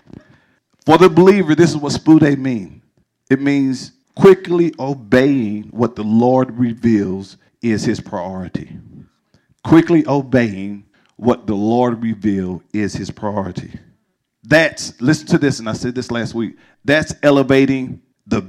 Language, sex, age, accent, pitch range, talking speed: English, male, 50-69, American, 135-175 Hz, 135 wpm